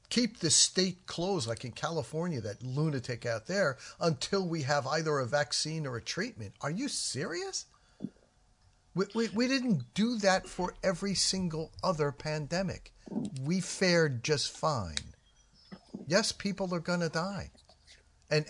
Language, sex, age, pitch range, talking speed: English, male, 50-69, 110-150 Hz, 145 wpm